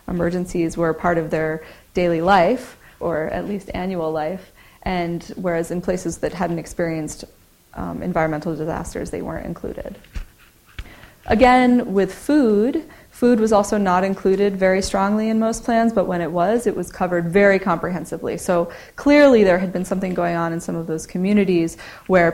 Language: English